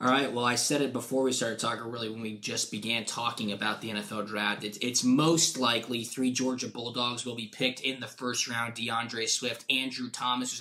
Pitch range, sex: 120-140 Hz, male